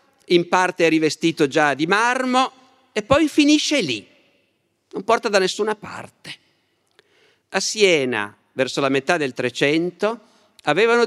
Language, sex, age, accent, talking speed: Italian, male, 50-69, native, 130 wpm